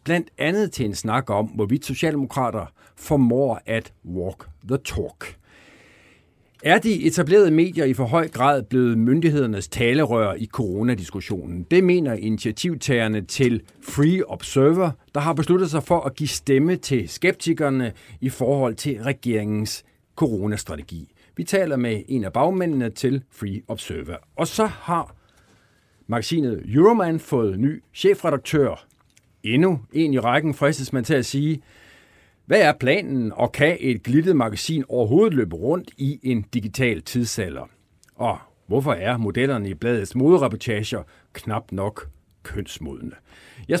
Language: Danish